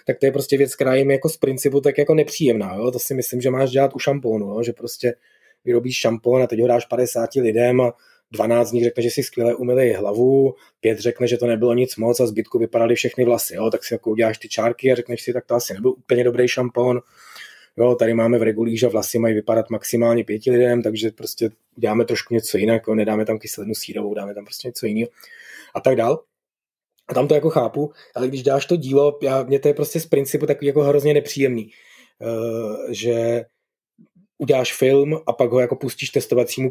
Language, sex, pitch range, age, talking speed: Czech, male, 115-140 Hz, 20-39, 215 wpm